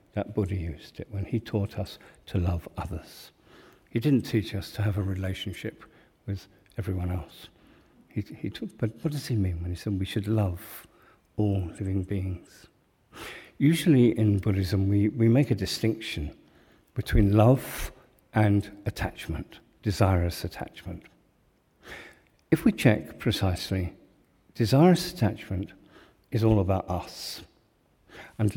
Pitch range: 95-120 Hz